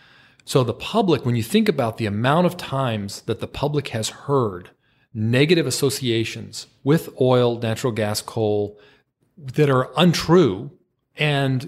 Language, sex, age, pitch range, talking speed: English, male, 40-59, 105-140 Hz, 140 wpm